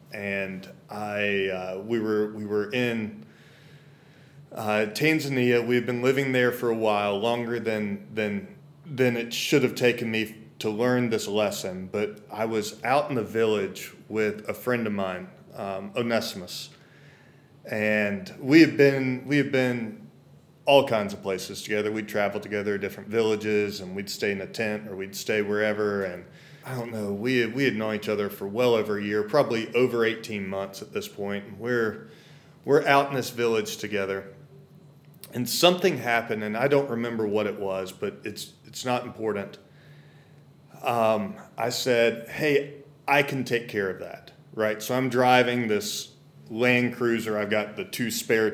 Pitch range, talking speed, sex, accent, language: 105-130 Hz, 170 wpm, male, American, English